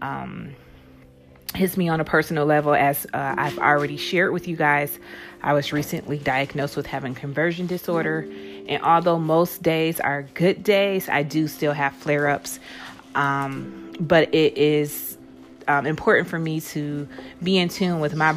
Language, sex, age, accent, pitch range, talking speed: English, female, 30-49, American, 140-170 Hz, 155 wpm